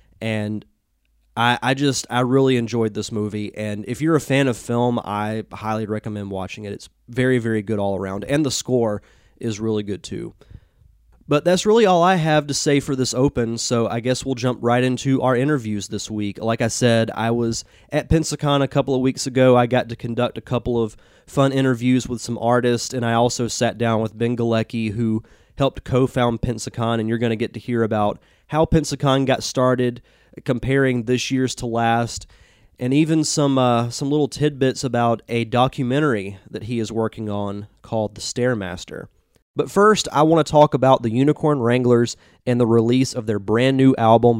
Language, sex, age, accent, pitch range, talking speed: English, male, 20-39, American, 110-135 Hz, 195 wpm